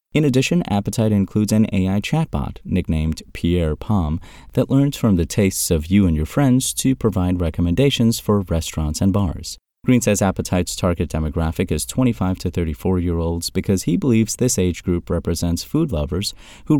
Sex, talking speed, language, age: male, 165 wpm, English, 30-49